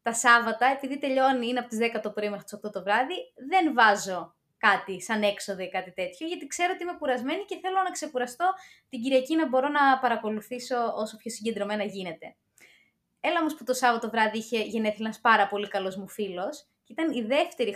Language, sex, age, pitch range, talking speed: Greek, female, 20-39, 215-300 Hz, 205 wpm